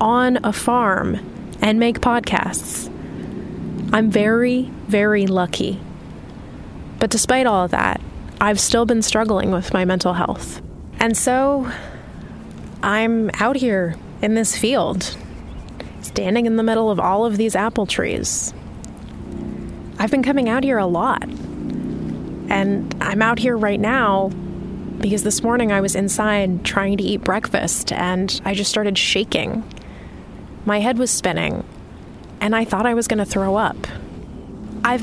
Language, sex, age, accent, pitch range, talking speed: English, female, 20-39, American, 200-235 Hz, 140 wpm